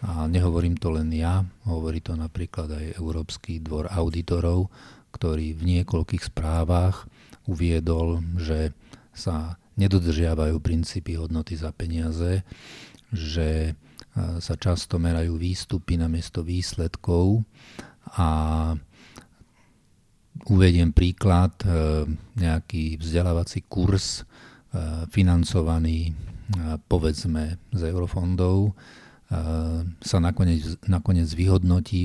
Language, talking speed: Slovak, 80 wpm